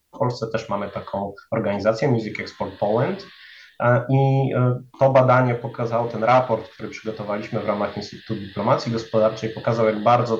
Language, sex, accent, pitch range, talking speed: Polish, male, native, 110-140 Hz, 145 wpm